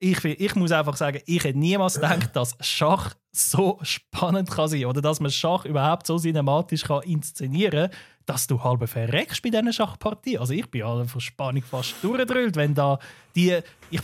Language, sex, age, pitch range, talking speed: German, male, 20-39, 140-170 Hz, 190 wpm